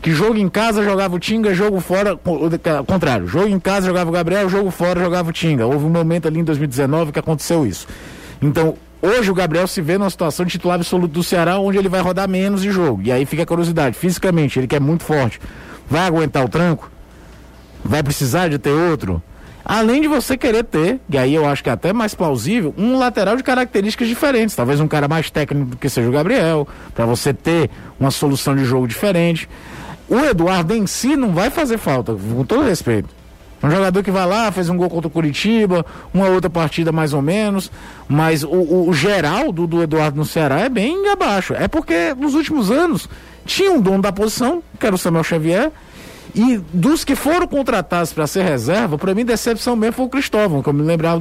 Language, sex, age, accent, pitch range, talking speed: Portuguese, male, 50-69, Brazilian, 155-210 Hz, 215 wpm